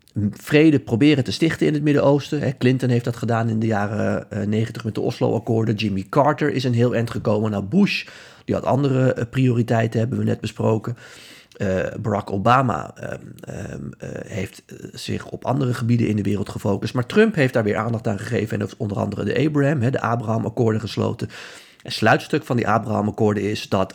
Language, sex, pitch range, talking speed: Dutch, male, 100-125 Hz, 175 wpm